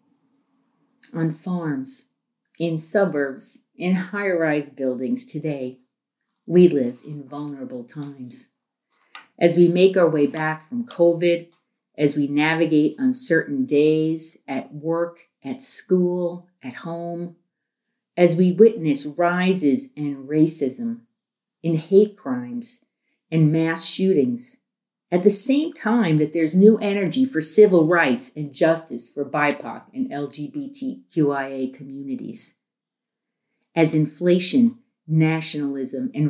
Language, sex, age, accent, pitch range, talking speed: English, female, 50-69, American, 150-220 Hz, 110 wpm